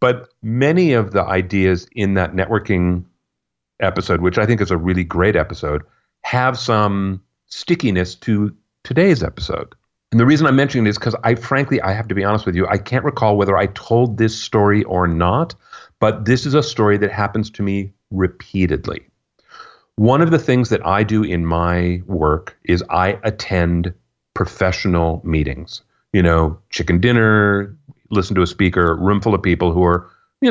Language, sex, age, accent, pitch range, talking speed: English, male, 40-59, American, 90-120 Hz, 175 wpm